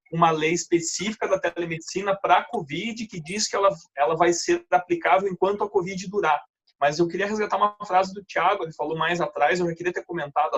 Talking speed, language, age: 210 wpm, Portuguese, 20-39